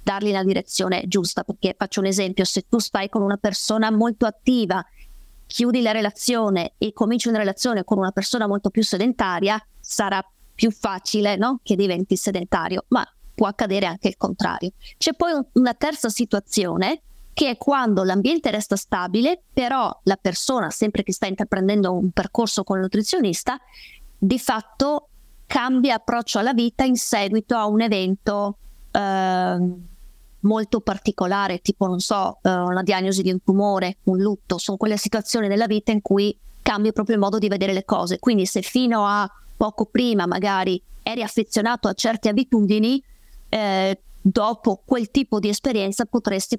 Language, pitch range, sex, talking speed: Italian, 195-235 Hz, female, 160 wpm